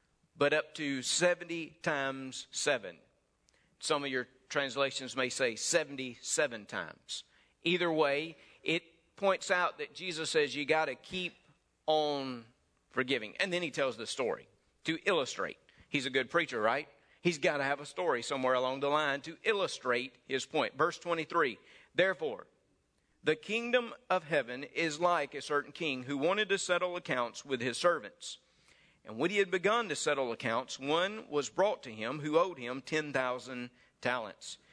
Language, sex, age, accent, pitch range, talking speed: English, male, 50-69, American, 130-170 Hz, 160 wpm